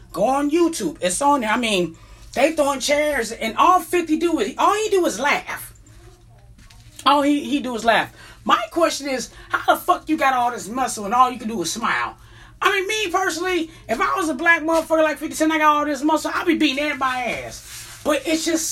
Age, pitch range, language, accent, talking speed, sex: 30-49, 245-330 Hz, English, American, 230 wpm, female